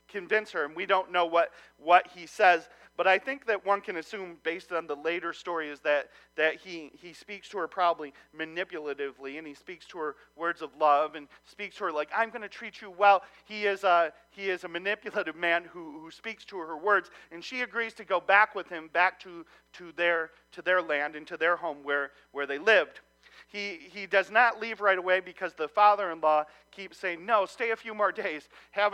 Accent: American